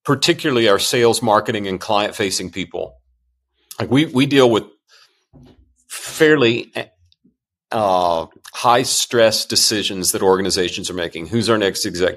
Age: 40-59